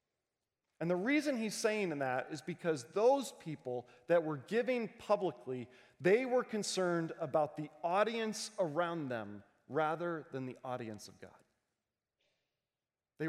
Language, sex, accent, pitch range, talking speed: English, male, American, 150-215 Hz, 130 wpm